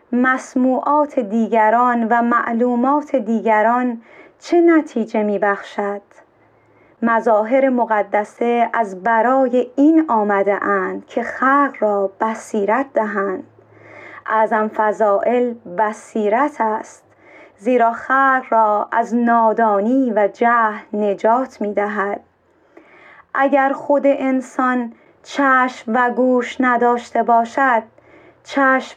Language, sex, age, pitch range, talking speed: Persian, female, 30-49, 220-265 Hz, 85 wpm